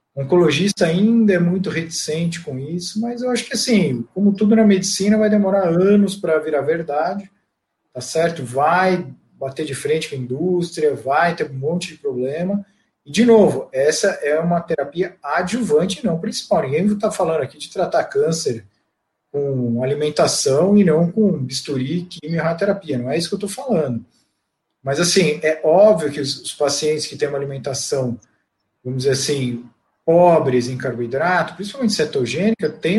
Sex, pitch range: male, 140-200 Hz